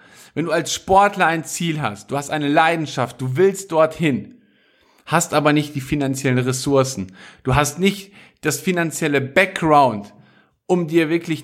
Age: 50-69